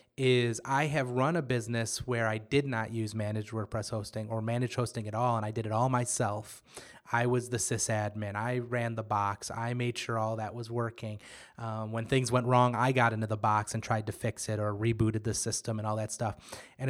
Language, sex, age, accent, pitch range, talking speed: English, male, 30-49, American, 110-130 Hz, 225 wpm